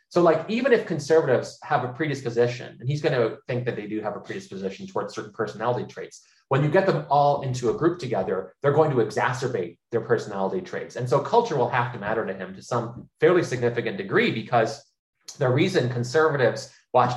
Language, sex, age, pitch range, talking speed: English, male, 30-49, 120-155 Hz, 200 wpm